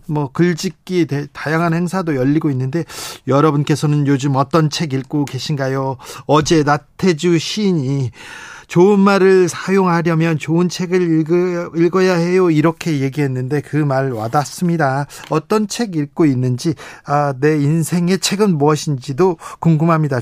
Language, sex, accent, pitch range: Korean, male, native, 145-185 Hz